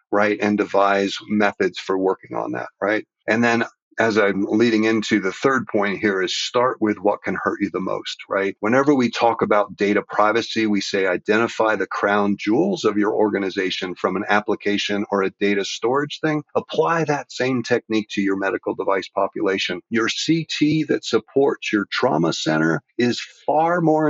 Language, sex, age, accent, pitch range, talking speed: English, male, 50-69, American, 100-120 Hz, 175 wpm